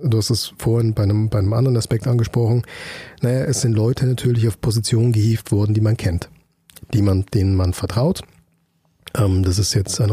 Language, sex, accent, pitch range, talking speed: German, male, German, 100-120 Hz, 195 wpm